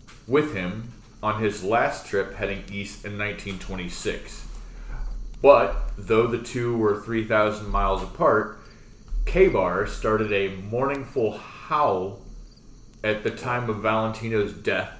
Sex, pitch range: male, 100-120 Hz